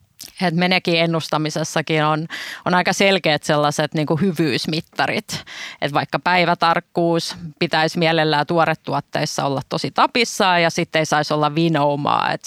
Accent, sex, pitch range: native, female, 150-170 Hz